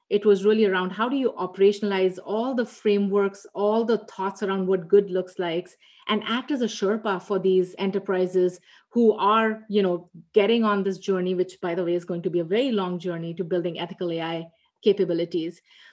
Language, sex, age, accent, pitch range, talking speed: English, female, 30-49, Indian, 185-220 Hz, 195 wpm